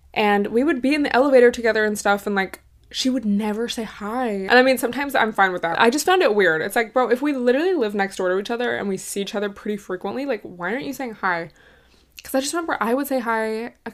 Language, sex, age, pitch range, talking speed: English, female, 20-39, 195-245 Hz, 275 wpm